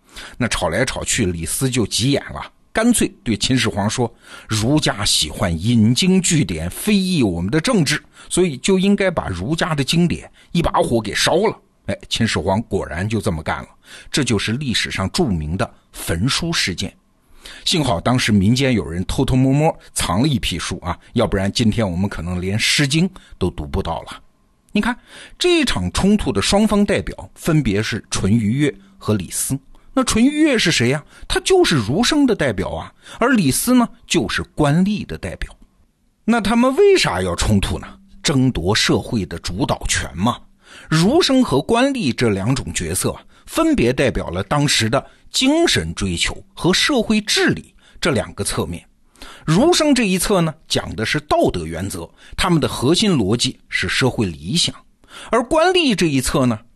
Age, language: 50-69, Chinese